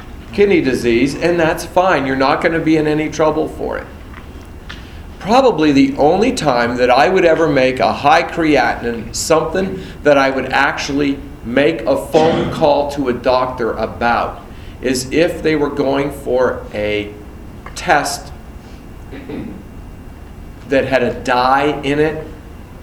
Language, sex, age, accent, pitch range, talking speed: English, male, 40-59, American, 110-145 Hz, 140 wpm